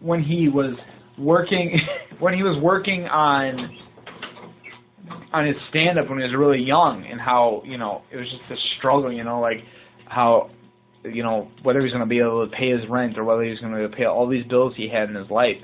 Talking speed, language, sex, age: 240 wpm, English, male, 20-39